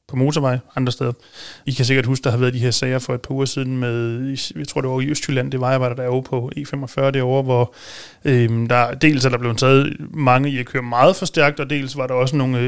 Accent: native